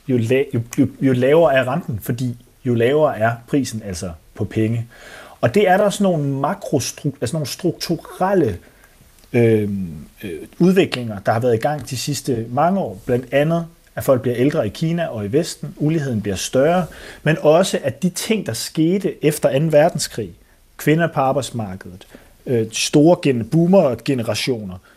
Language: Danish